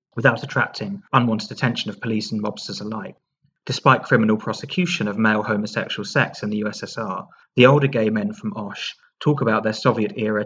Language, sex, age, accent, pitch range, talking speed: English, male, 30-49, British, 110-180 Hz, 165 wpm